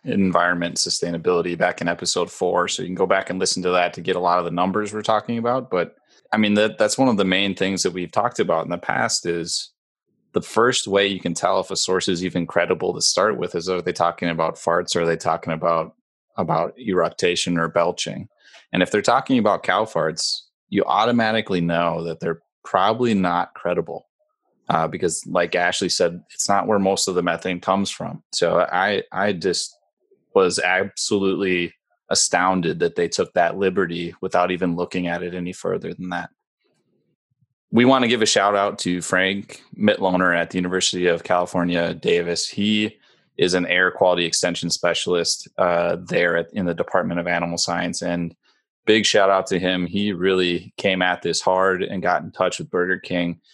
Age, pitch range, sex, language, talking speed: 20-39, 85-100 Hz, male, English, 195 wpm